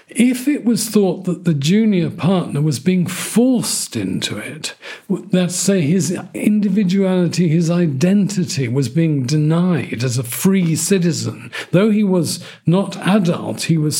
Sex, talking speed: male, 145 wpm